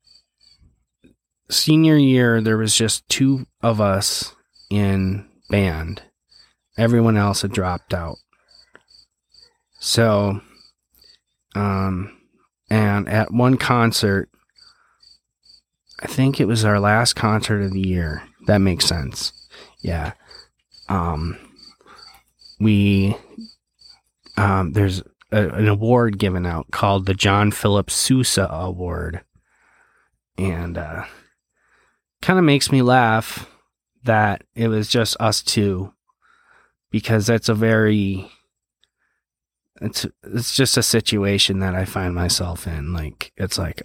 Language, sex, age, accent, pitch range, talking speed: English, male, 30-49, American, 95-115 Hz, 110 wpm